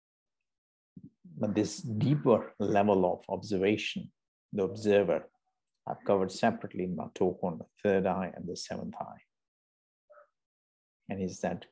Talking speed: 130 wpm